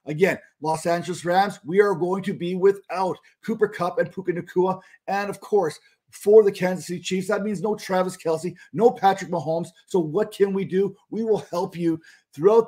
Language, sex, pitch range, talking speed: English, male, 170-205 Hz, 195 wpm